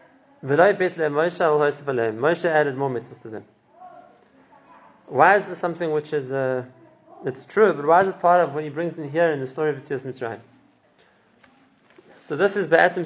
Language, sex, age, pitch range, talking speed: English, male, 30-49, 145-175 Hz, 180 wpm